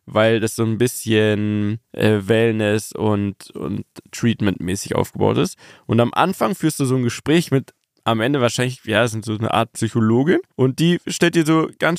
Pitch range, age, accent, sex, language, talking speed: 110-140 Hz, 20-39, German, male, German, 185 wpm